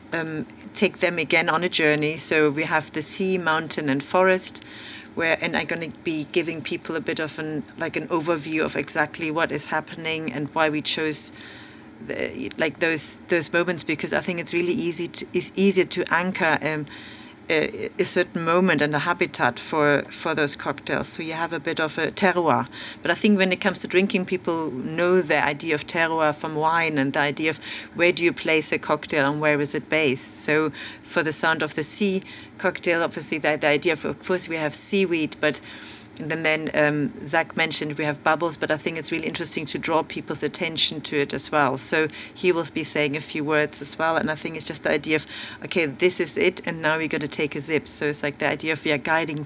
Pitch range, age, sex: 150-170 Hz, 40-59, female